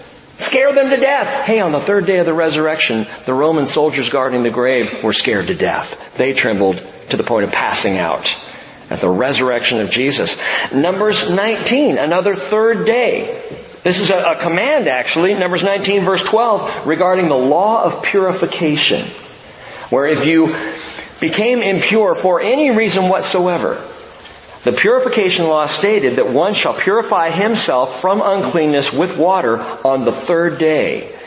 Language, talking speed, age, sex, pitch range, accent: English, 155 wpm, 50-69, male, 145-215 Hz, American